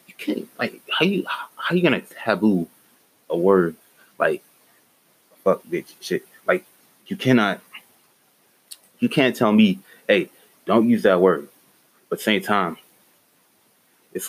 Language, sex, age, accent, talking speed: English, male, 20-39, American, 125 wpm